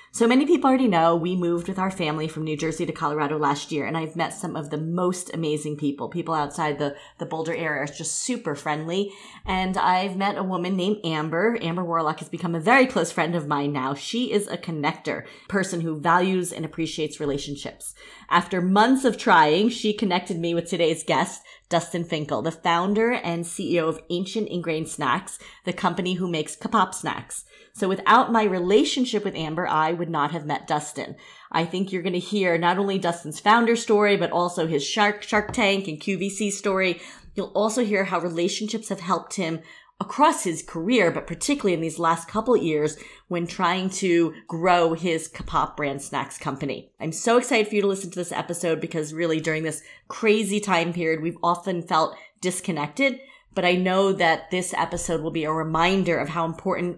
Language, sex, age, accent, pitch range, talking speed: English, female, 30-49, American, 160-195 Hz, 195 wpm